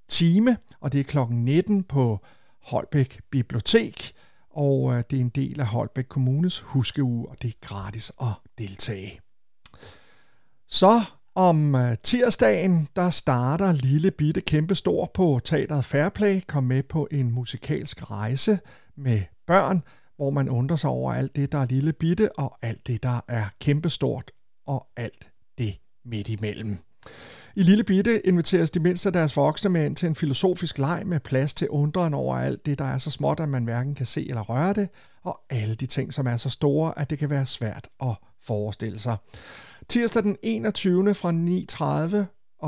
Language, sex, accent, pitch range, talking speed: Danish, male, native, 125-175 Hz, 165 wpm